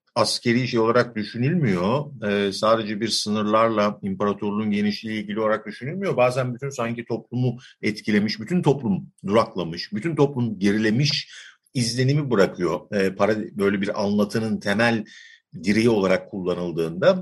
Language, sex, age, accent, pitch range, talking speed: Turkish, male, 50-69, native, 105-140 Hz, 120 wpm